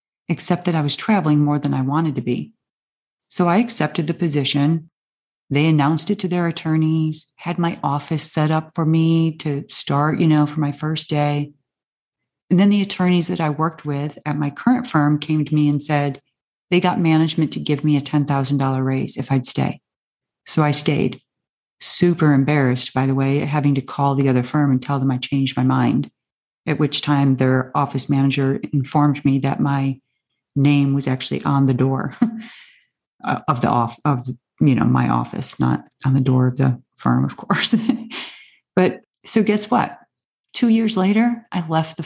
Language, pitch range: English, 140-170 Hz